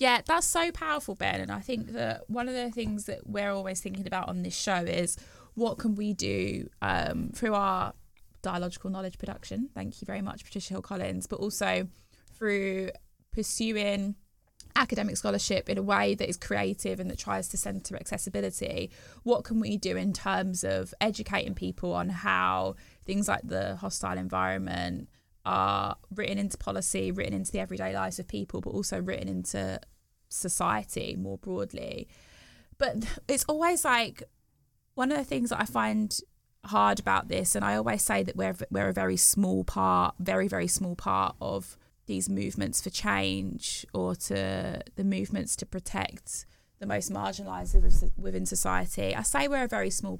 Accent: British